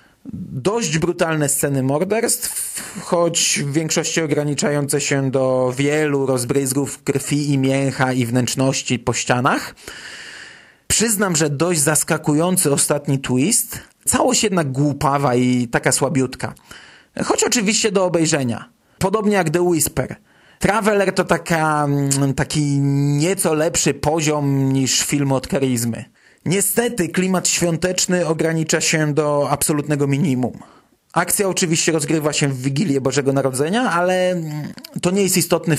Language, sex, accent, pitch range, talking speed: Polish, male, native, 140-175 Hz, 120 wpm